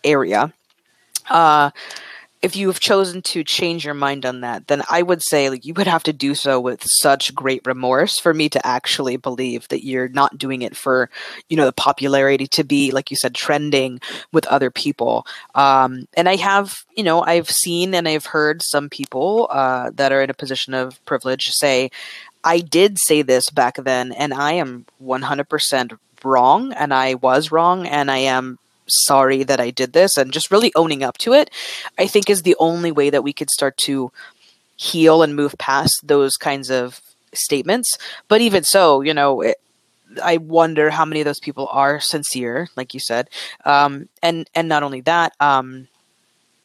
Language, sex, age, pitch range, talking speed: English, female, 20-39, 135-165 Hz, 190 wpm